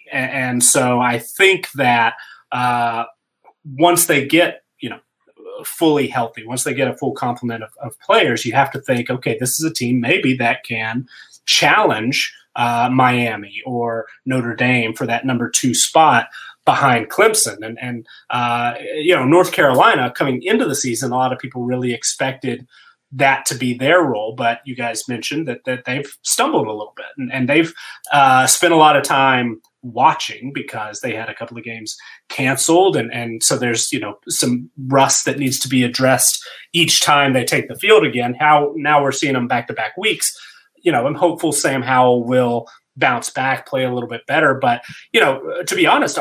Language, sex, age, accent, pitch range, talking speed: English, male, 30-49, American, 120-140 Hz, 190 wpm